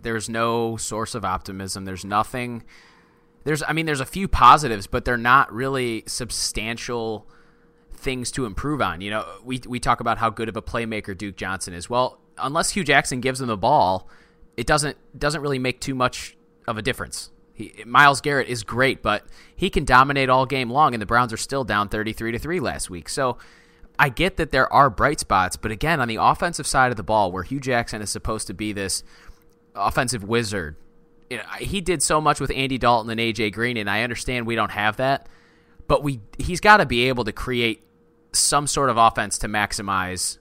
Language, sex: English, male